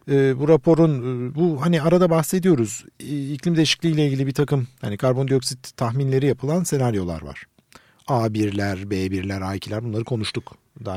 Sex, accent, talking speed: male, native, 135 wpm